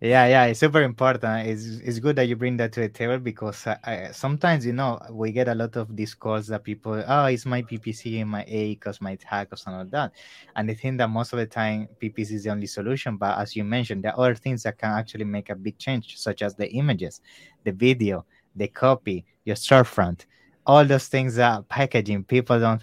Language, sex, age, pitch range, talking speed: English, male, 20-39, 105-120 Hz, 225 wpm